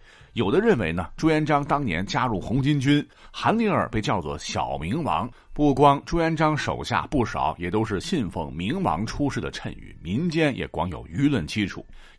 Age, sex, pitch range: 50-69, male, 100-155 Hz